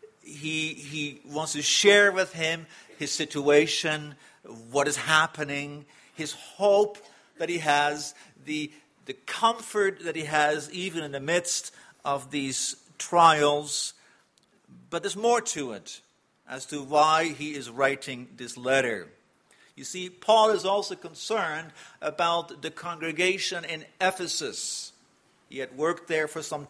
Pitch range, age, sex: 145-185 Hz, 50-69, male